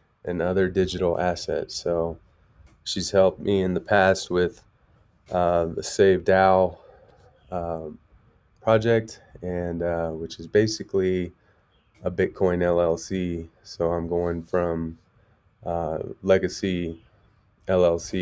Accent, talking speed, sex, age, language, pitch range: American, 110 wpm, male, 20-39, English, 85-100 Hz